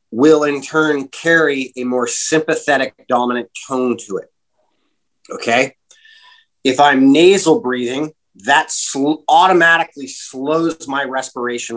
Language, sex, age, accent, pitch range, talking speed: English, male, 30-49, American, 120-155 Hz, 105 wpm